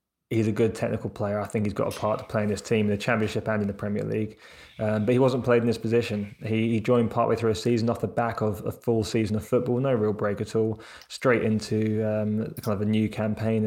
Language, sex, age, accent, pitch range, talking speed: English, male, 20-39, British, 105-115 Hz, 270 wpm